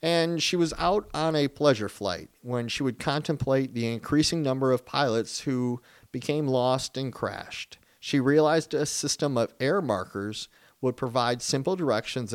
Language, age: English, 40-59